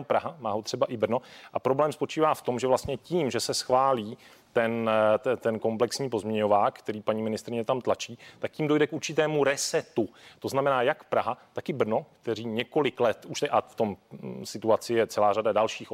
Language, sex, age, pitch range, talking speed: Czech, male, 30-49, 120-140 Hz, 195 wpm